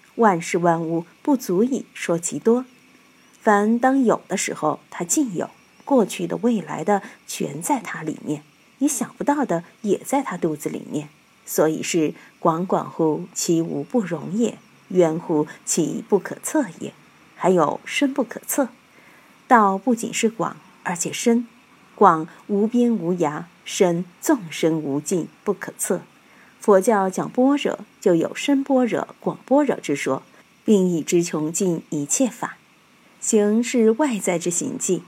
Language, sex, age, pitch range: Chinese, female, 50-69, 170-240 Hz